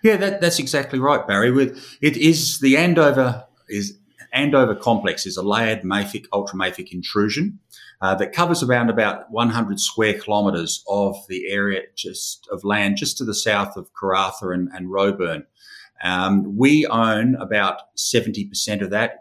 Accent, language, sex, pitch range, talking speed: Australian, English, male, 100-120 Hz, 160 wpm